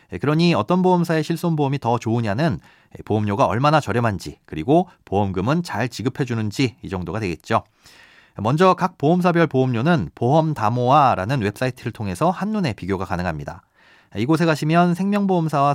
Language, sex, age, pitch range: Korean, male, 40-59, 105-160 Hz